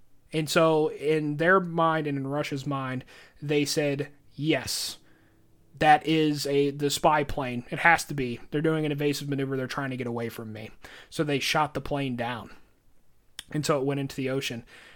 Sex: male